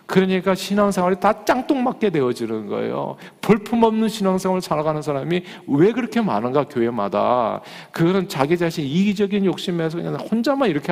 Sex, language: male, Korean